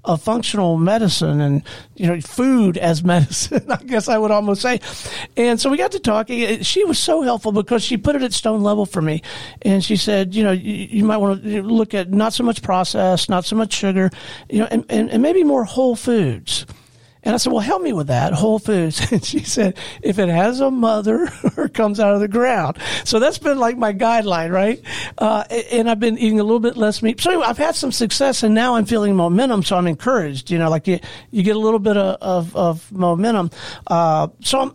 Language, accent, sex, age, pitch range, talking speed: English, American, male, 50-69, 175-235 Hz, 230 wpm